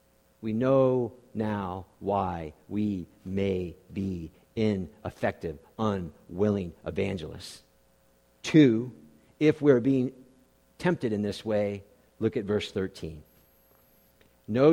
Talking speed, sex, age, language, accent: 95 wpm, male, 50-69, English, American